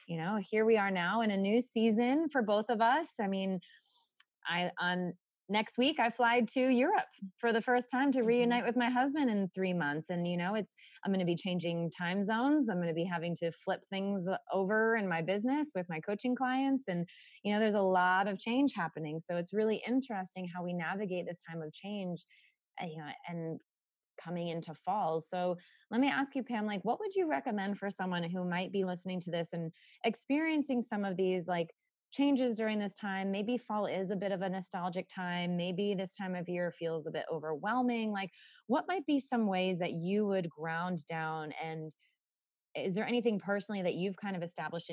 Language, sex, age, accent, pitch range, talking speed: English, female, 20-39, American, 175-225 Hz, 210 wpm